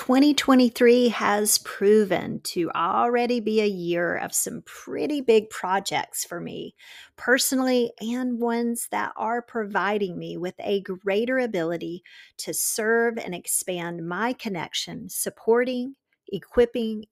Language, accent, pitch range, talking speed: English, American, 180-240 Hz, 120 wpm